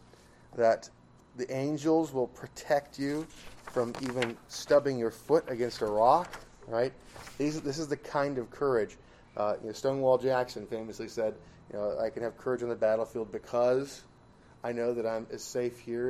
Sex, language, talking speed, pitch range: male, English, 160 wpm, 110-130 Hz